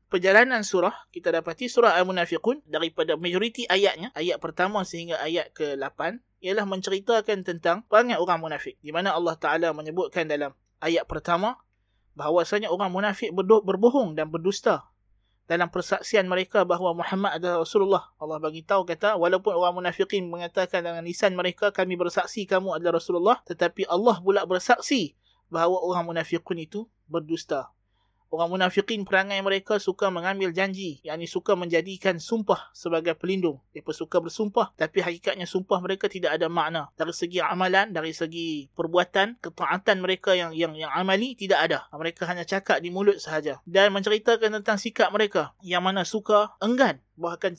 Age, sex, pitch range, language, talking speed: 20-39, male, 165-200 Hz, Malay, 150 wpm